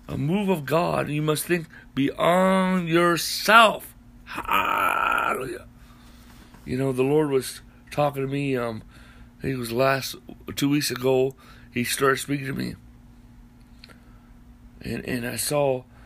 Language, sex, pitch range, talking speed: English, male, 120-155 Hz, 140 wpm